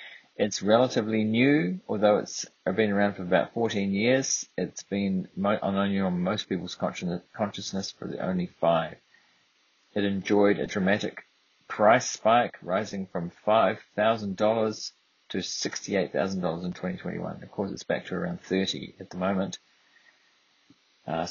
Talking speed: 130 wpm